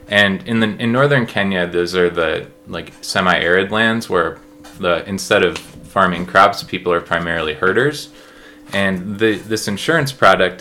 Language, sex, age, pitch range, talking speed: English, male, 20-39, 90-100 Hz, 155 wpm